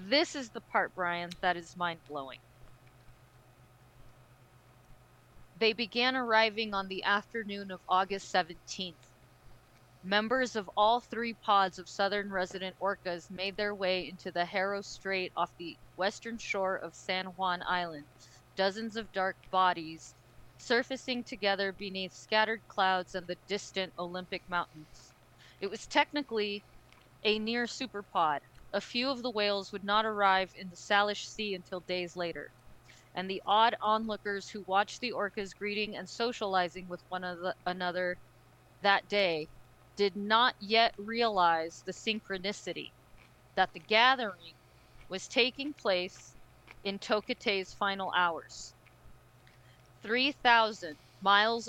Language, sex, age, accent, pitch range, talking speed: English, female, 30-49, American, 165-210 Hz, 130 wpm